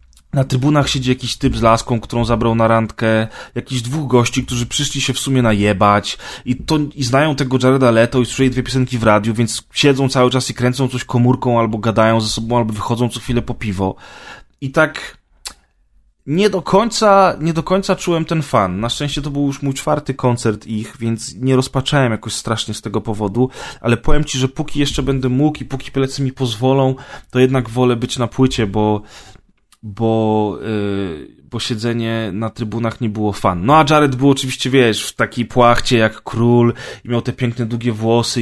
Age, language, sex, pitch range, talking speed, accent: 20-39, Polish, male, 115-140 Hz, 195 wpm, native